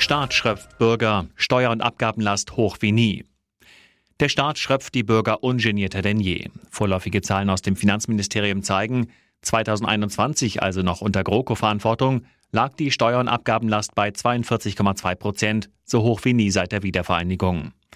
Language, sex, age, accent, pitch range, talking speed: German, male, 40-59, German, 100-115 Hz, 145 wpm